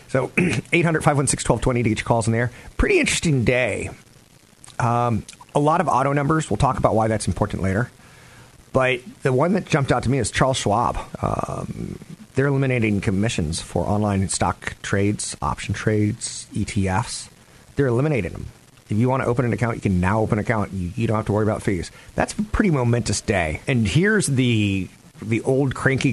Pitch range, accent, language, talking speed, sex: 105-135 Hz, American, English, 185 wpm, male